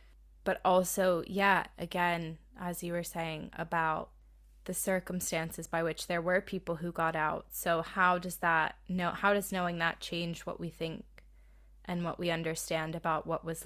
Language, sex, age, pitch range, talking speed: English, female, 20-39, 160-185 Hz, 170 wpm